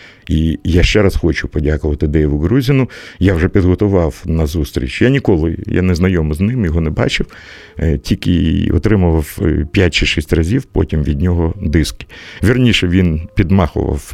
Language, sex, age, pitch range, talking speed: Russian, male, 50-69, 80-100 Hz, 145 wpm